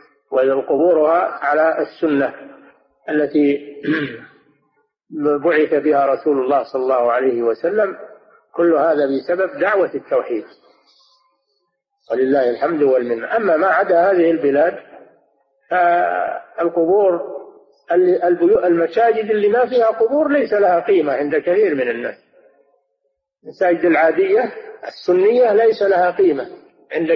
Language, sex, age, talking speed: Arabic, male, 50-69, 100 wpm